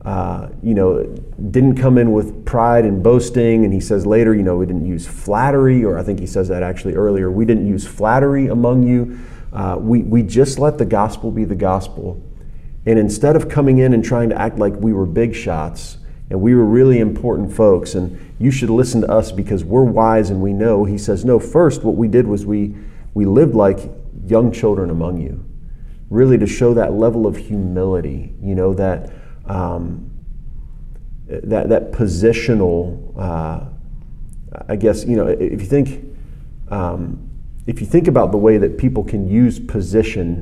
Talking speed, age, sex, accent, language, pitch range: 185 wpm, 40-59, male, American, English, 90-115 Hz